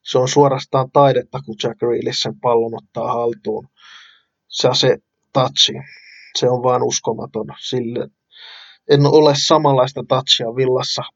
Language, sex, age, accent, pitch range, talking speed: Finnish, male, 20-39, native, 120-140 Hz, 125 wpm